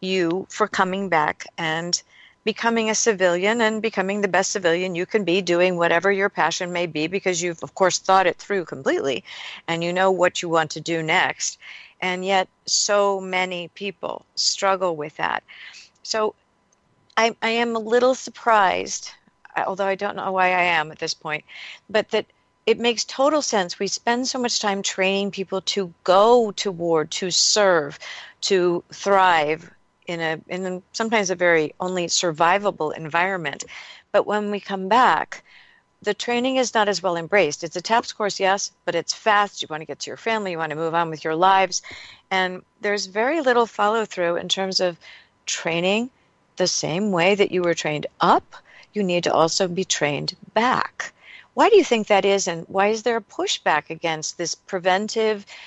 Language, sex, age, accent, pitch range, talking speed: English, female, 50-69, American, 175-210 Hz, 180 wpm